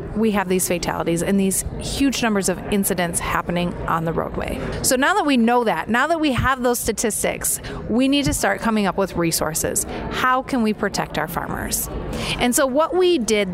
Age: 30-49